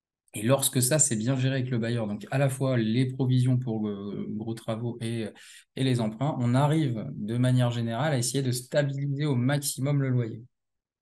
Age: 20-39